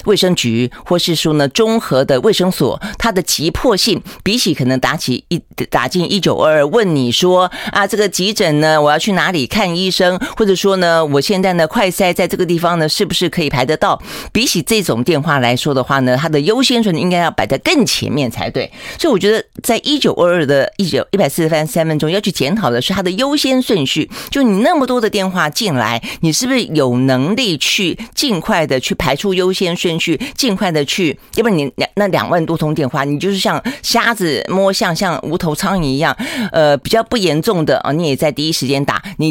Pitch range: 145-200 Hz